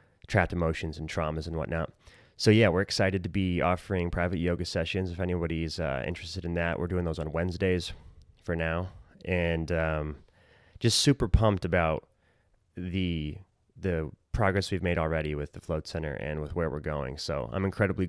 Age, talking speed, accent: 30-49, 175 wpm, American